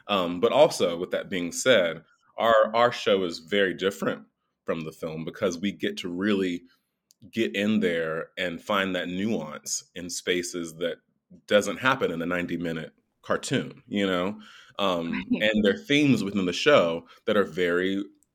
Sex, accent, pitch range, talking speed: male, American, 90-115 Hz, 165 wpm